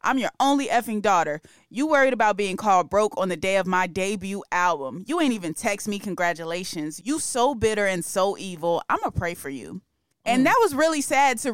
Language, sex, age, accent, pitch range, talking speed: English, female, 20-39, American, 180-215 Hz, 215 wpm